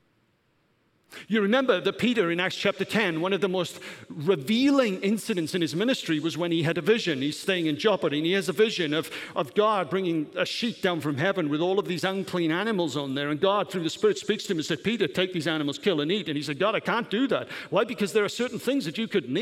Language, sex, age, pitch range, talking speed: English, male, 50-69, 155-225 Hz, 255 wpm